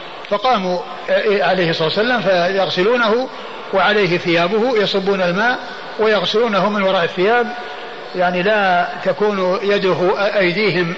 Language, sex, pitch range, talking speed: Arabic, male, 175-205 Hz, 110 wpm